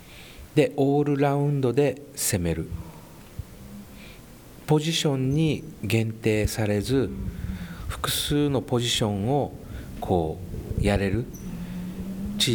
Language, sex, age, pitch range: Japanese, male, 40-59, 95-135 Hz